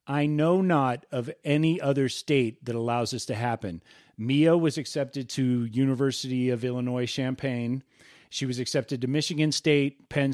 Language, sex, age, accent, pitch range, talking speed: English, male, 40-59, American, 125-145 Hz, 155 wpm